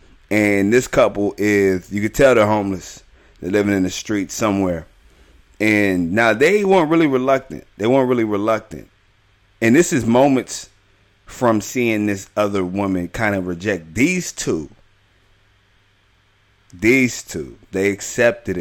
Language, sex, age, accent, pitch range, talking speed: English, male, 30-49, American, 95-110 Hz, 140 wpm